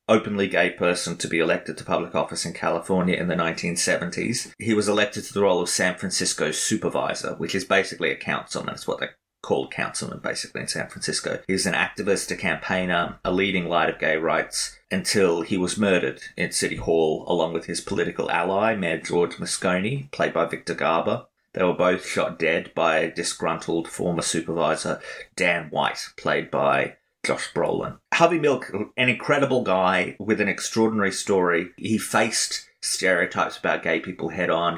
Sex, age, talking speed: male, 30-49, 175 wpm